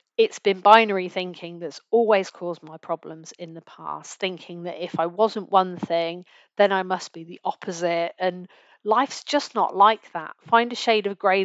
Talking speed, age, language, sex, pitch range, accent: 190 wpm, 40-59, English, female, 175-205 Hz, British